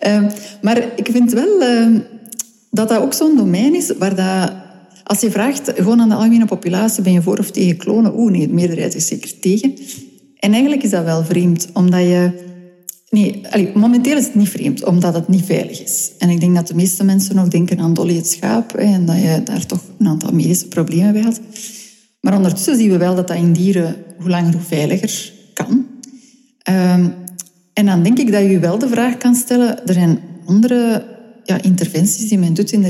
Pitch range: 180-225 Hz